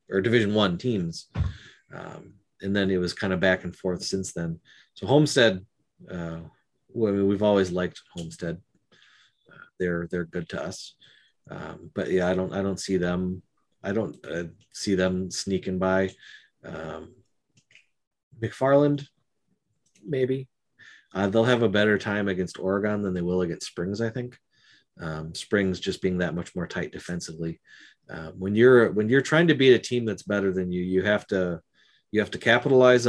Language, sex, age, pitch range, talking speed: English, male, 30-49, 90-110 Hz, 170 wpm